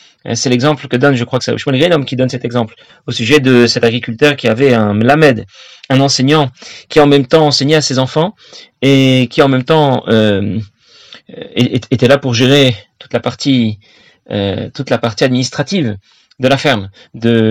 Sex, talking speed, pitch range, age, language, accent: male, 185 wpm, 120-155 Hz, 40-59, French, French